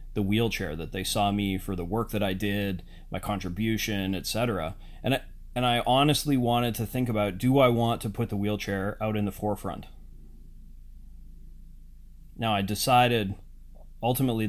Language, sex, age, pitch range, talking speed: English, male, 30-49, 95-120 Hz, 155 wpm